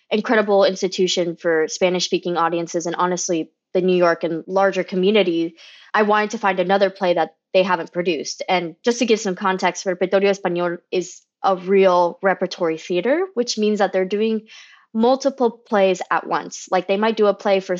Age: 20-39